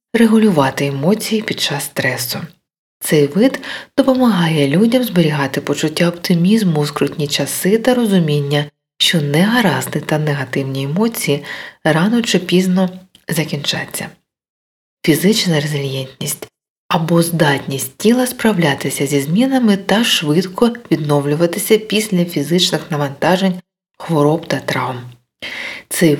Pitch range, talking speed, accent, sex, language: 145-195 Hz, 100 wpm, native, female, Ukrainian